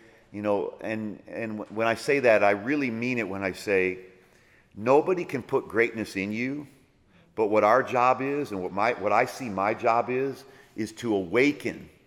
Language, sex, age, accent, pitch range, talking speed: English, male, 40-59, American, 105-135 Hz, 190 wpm